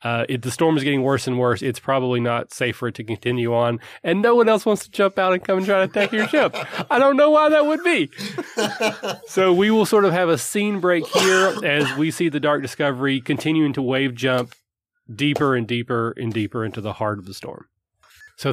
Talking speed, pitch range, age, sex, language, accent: 235 wpm, 115-145 Hz, 30-49, male, English, American